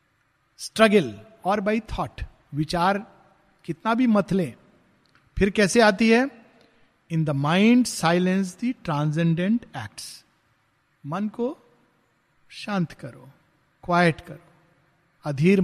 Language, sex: Hindi, male